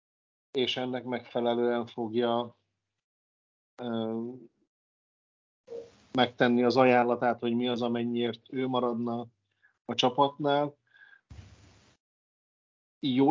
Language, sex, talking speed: Hungarian, male, 75 wpm